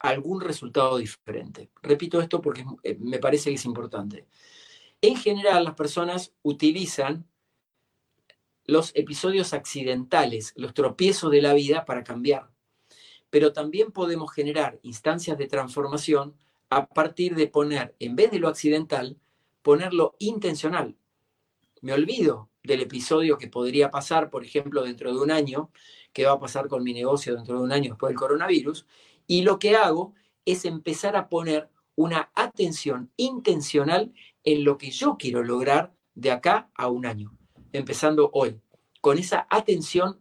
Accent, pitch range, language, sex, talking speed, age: Argentinian, 135-175 Hz, Spanish, male, 145 wpm, 40-59